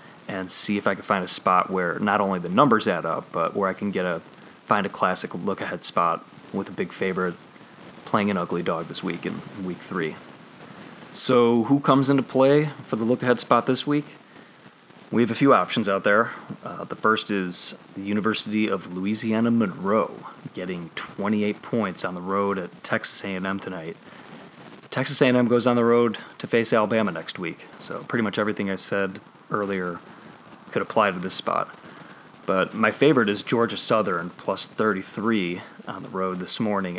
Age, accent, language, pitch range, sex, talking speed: 30-49, American, English, 95-115 Hz, male, 180 wpm